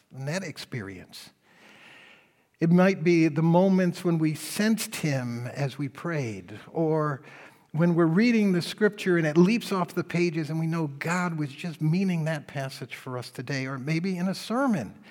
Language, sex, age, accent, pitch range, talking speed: English, male, 60-79, American, 115-165 Hz, 175 wpm